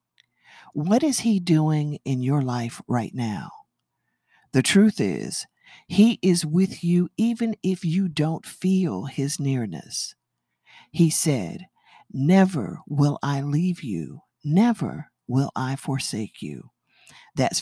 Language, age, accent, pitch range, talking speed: English, 50-69, American, 130-185 Hz, 125 wpm